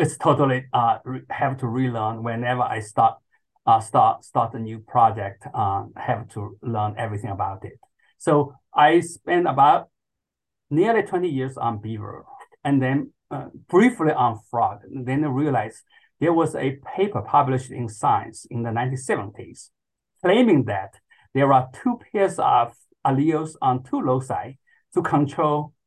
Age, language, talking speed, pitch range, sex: 50-69, English, 150 wpm, 125-155 Hz, male